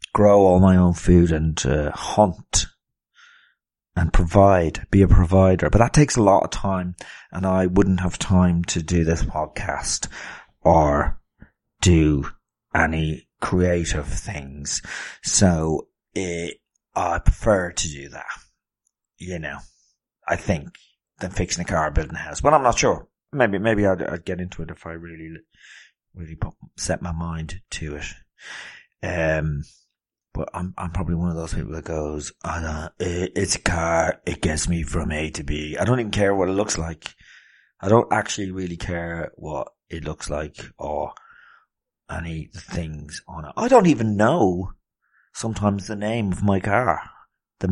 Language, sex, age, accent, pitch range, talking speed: English, male, 40-59, British, 80-100 Hz, 160 wpm